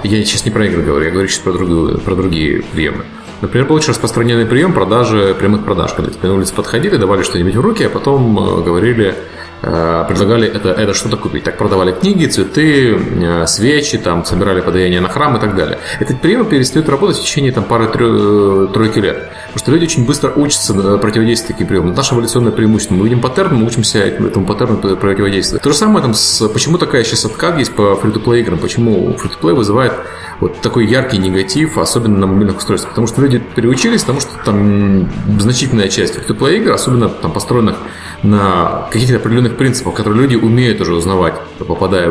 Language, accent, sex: Russian, native, male